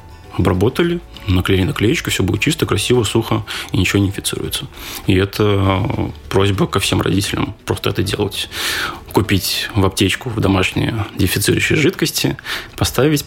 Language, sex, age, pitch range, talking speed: Russian, male, 20-39, 95-105 Hz, 130 wpm